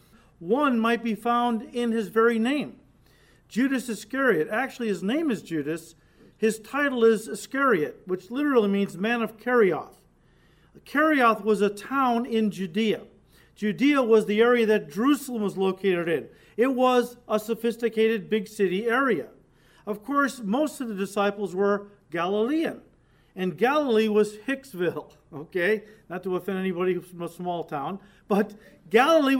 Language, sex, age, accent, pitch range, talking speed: English, male, 50-69, American, 200-255 Hz, 145 wpm